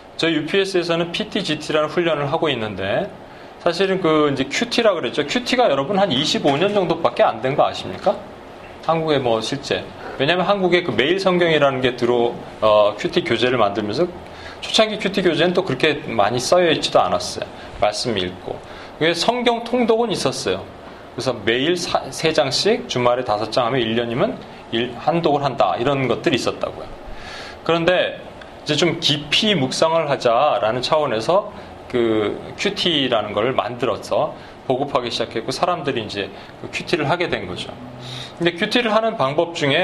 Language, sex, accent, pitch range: Korean, male, native, 125-180 Hz